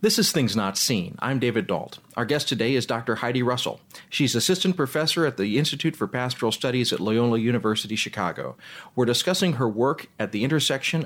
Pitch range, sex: 105-130 Hz, male